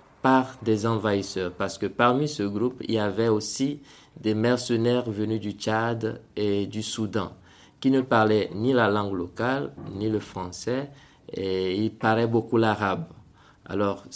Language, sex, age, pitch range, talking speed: French, male, 20-39, 100-125 Hz, 155 wpm